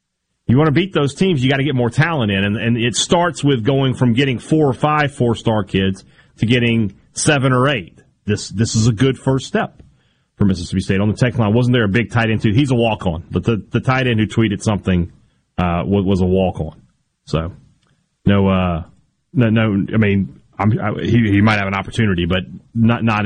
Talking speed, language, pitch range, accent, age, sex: 220 wpm, English, 105-140 Hz, American, 30-49, male